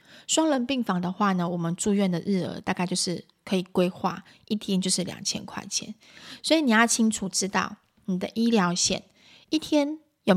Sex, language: female, Chinese